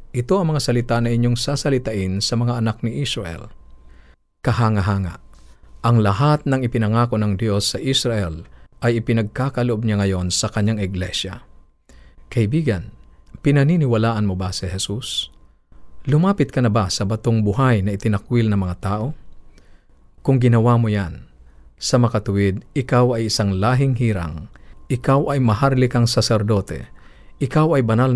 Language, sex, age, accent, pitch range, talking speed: Filipino, male, 50-69, native, 90-120 Hz, 135 wpm